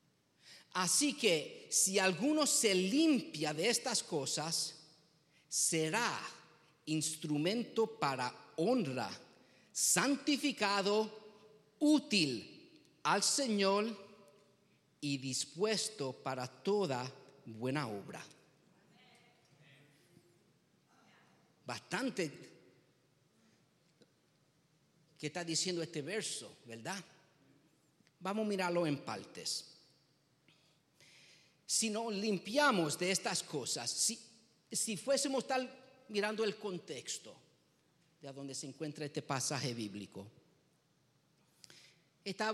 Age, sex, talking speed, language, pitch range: 50-69, male, 80 wpm, English, 150-200 Hz